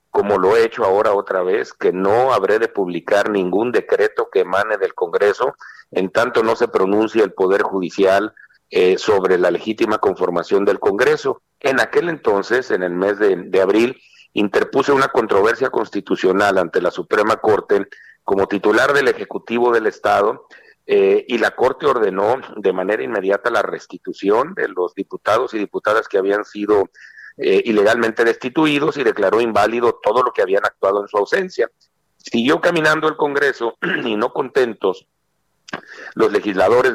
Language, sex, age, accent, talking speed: Spanish, male, 50-69, Mexican, 160 wpm